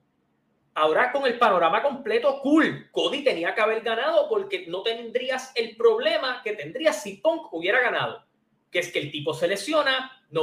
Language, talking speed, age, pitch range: Spanish, 175 wpm, 20-39, 205-320 Hz